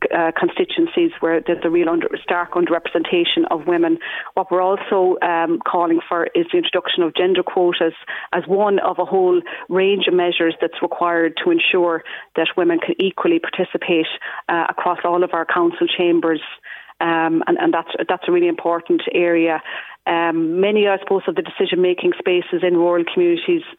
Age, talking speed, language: 40-59, 165 wpm, English